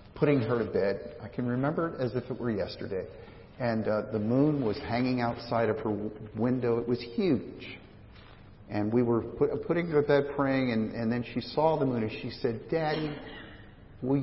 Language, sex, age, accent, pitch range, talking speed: English, male, 50-69, American, 110-145 Hz, 205 wpm